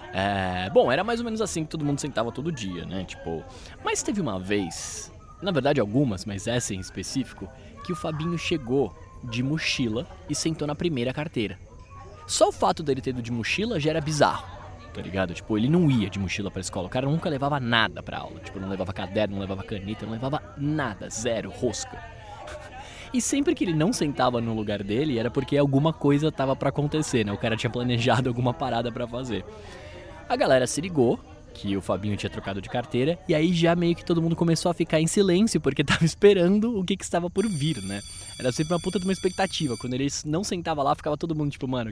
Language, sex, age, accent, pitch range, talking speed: Portuguese, male, 20-39, Brazilian, 100-155 Hz, 220 wpm